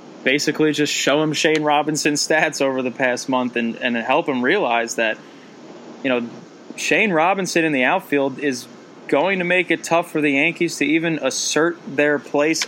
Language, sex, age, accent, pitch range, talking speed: English, male, 20-39, American, 130-155 Hz, 180 wpm